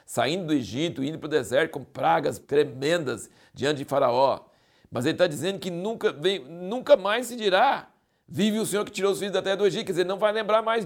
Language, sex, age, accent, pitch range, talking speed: Portuguese, male, 60-79, Brazilian, 155-220 Hz, 220 wpm